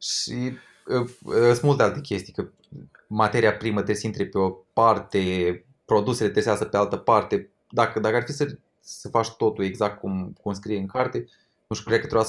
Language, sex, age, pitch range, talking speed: Romanian, male, 20-39, 100-120 Hz, 185 wpm